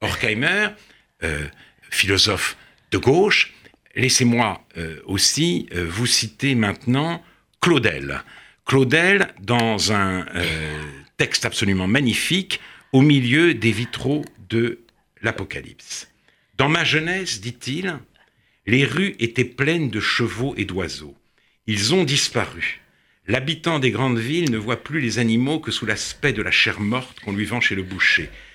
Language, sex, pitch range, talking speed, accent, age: French, male, 115-160 Hz, 130 wpm, French, 60-79